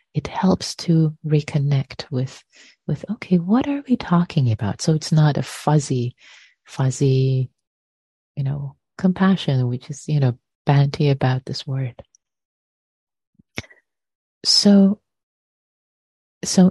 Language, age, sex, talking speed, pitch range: English, 30-49, female, 110 wpm, 130-175 Hz